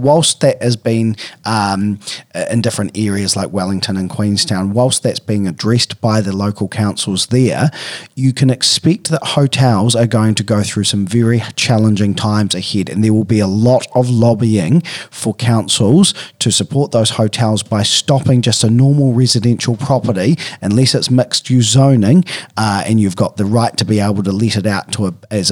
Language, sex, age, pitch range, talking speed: English, male, 40-59, 105-125 Hz, 185 wpm